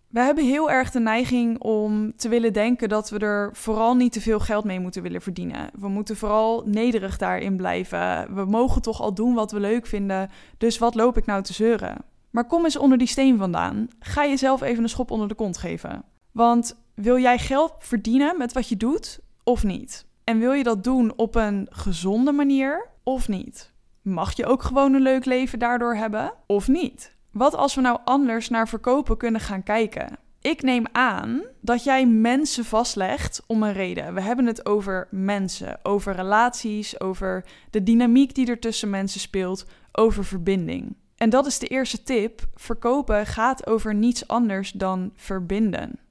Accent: Dutch